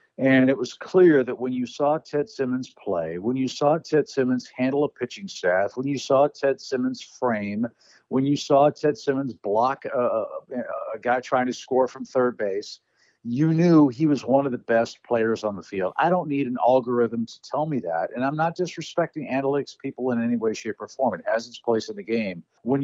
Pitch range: 115-140 Hz